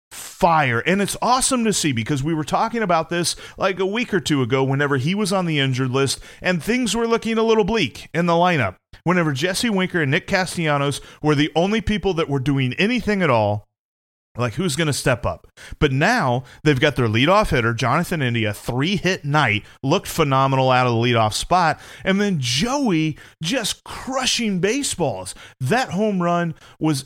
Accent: American